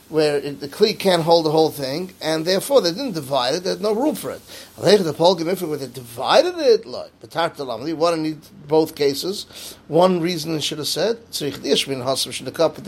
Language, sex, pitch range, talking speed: English, male, 135-170 Hz, 235 wpm